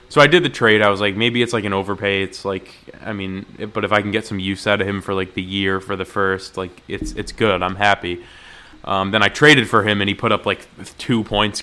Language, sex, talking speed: English, male, 280 wpm